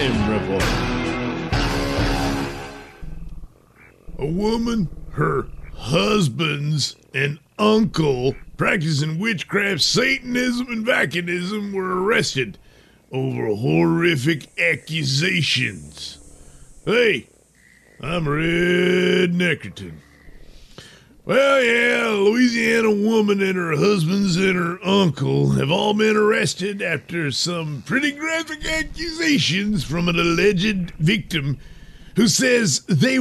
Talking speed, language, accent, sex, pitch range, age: 85 wpm, English, American, male, 145-215 Hz, 50-69